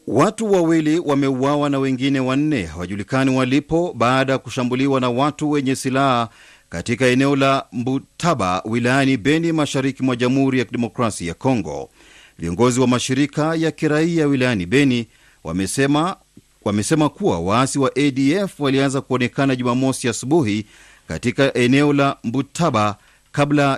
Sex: male